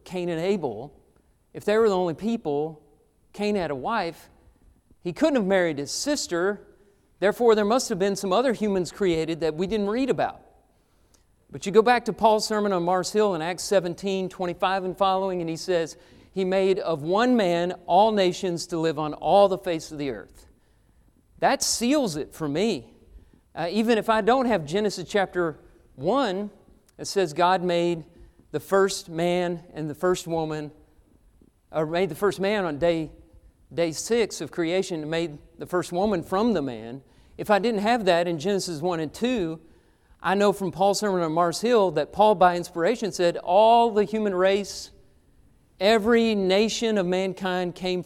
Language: English